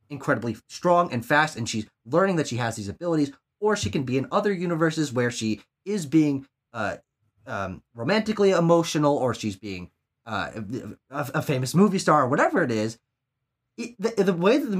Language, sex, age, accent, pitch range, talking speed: English, male, 20-39, American, 130-180 Hz, 185 wpm